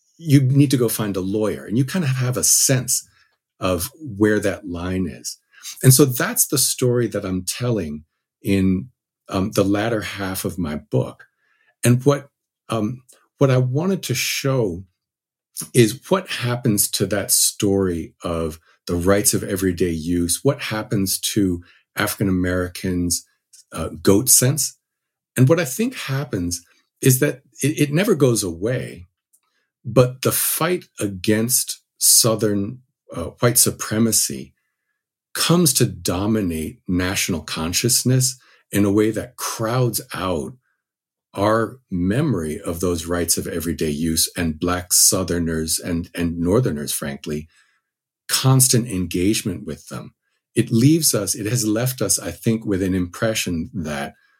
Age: 50-69